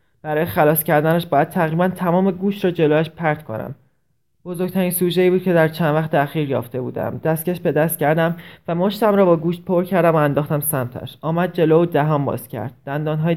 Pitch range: 150-185 Hz